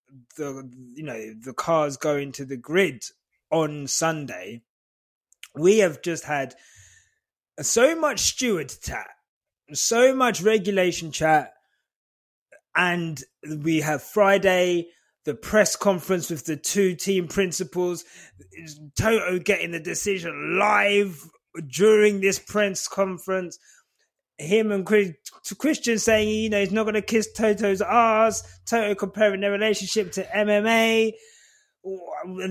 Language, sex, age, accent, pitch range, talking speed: English, male, 20-39, British, 160-215 Hz, 120 wpm